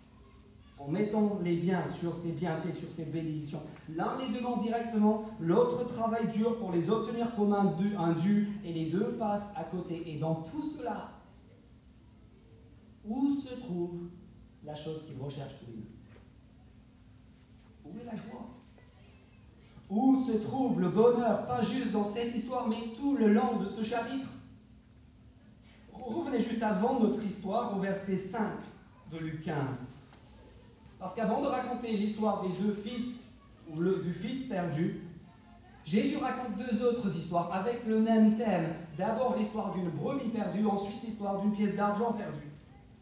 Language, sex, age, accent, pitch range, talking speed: French, male, 40-59, French, 170-230 Hz, 155 wpm